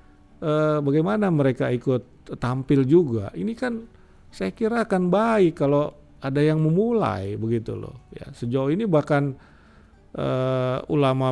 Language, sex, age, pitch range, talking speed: Indonesian, male, 50-69, 115-160 Hz, 120 wpm